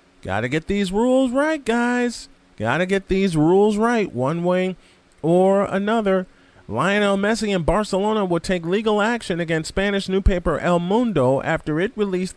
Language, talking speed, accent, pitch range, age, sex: English, 160 wpm, American, 130-190 Hz, 40-59, male